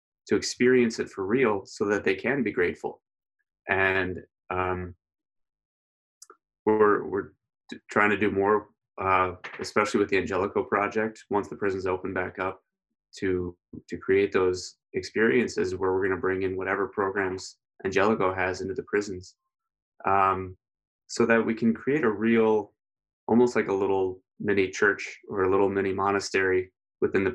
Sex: male